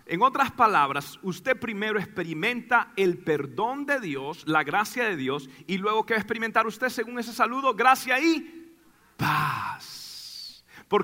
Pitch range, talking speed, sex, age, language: 170-240 Hz, 150 wpm, male, 40-59, Spanish